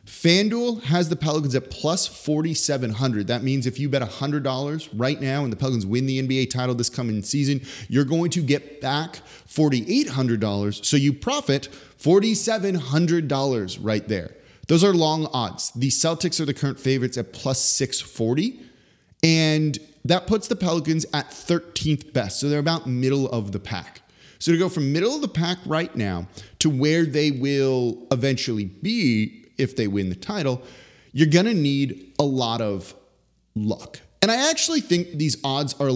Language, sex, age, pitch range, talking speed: English, male, 30-49, 115-155 Hz, 185 wpm